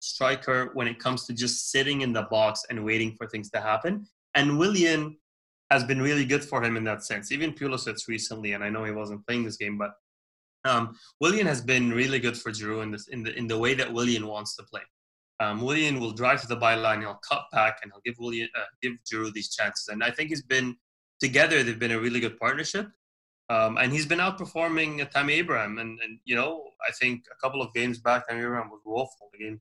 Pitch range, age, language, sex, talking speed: 110-130 Hz, 20-39, English, male, 225 wpm